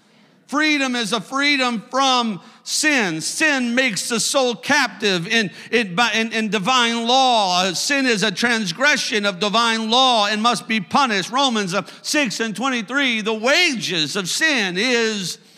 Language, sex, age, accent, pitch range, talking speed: English, male, 50-69, American, 215-270 Hz, 140 wpm